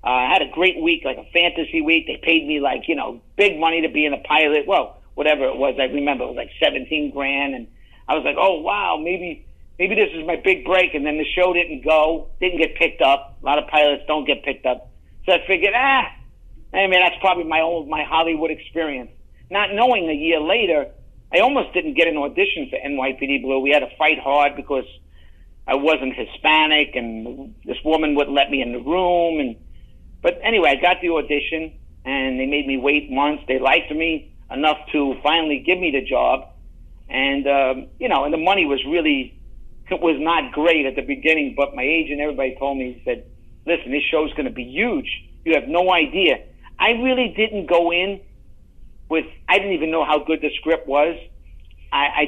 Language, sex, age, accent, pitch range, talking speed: English, male, 50-69, American, 135-165 Hz, 215 wpm